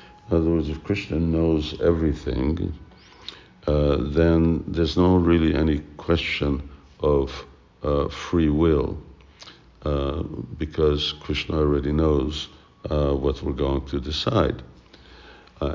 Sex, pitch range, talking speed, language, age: male, 70-85 Hz, 115 wpm, English, 60-79